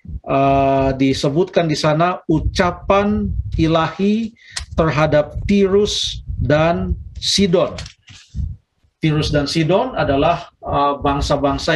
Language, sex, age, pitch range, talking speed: Indonesian, male, 50-69, 150-180 Hz, 80 wpm